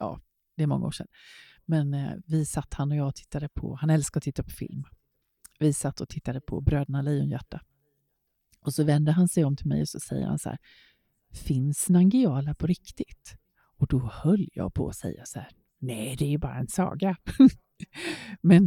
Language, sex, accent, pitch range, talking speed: Swedish, female, native, 145-190 Hz, 200 wpm